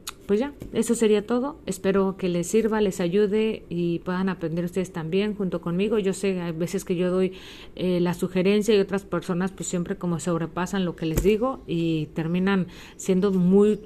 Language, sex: Spanish, female